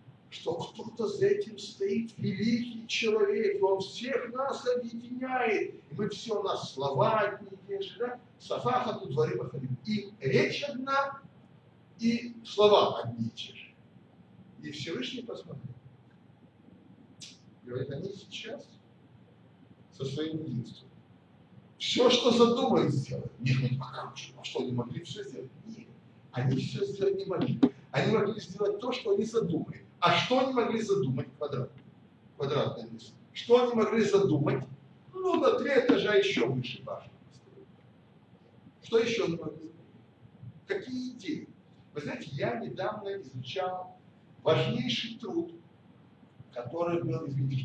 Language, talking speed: Russian, 130 wpm